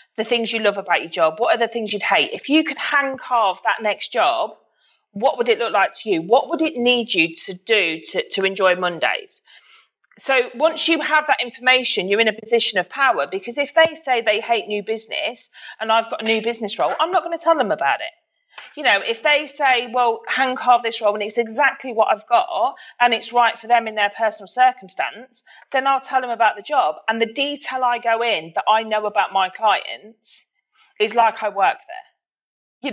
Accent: British